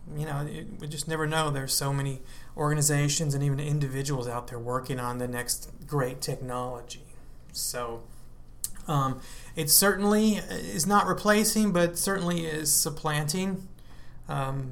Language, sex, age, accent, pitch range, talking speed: English, male, 30-49, American, 125-155 Hz, 135 wpm